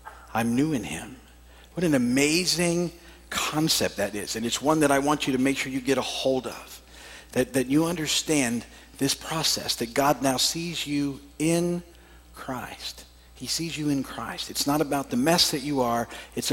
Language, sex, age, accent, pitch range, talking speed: English, male, 50-69, American, 95-155 Hz, 190 wpm